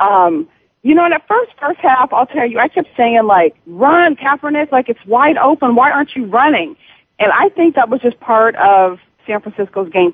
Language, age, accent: English, 40-59, American